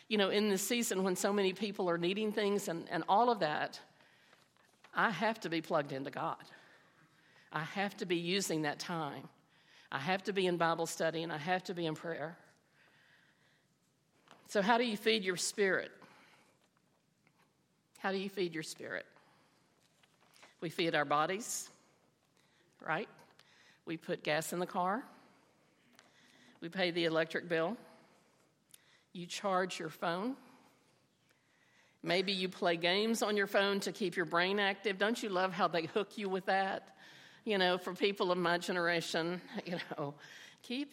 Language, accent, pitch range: English, American, 175-220 Hz